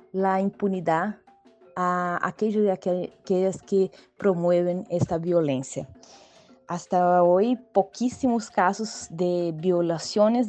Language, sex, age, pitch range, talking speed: Spanish, female, 20-39, 180-220 Hz, 90 wpm